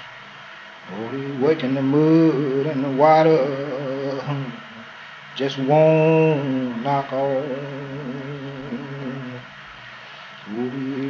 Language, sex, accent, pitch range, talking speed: English, male, American, 135-180 Hz, 60 wpm